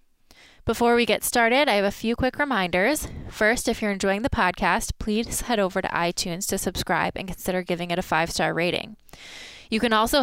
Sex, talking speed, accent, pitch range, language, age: female, 195 wpm, American, 185-225 Hz, English, 20-39